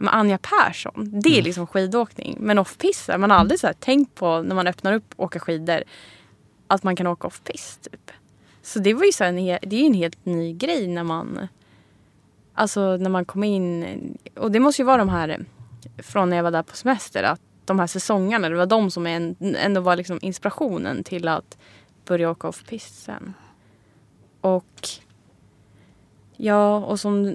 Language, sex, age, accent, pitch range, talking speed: English, female, 20-39, Norwegian, 165-205 Hz, 180 wpm